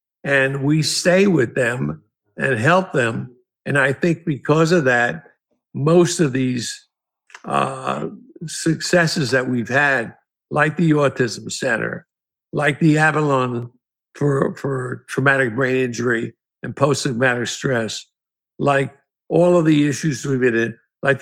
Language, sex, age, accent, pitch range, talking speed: English, male, 60-79, American, 135-165 Hz, 130 wpm